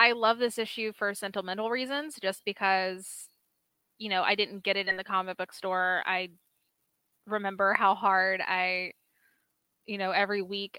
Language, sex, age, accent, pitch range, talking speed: English, female, 10-29, American, 195-230 Hz, 160 wpm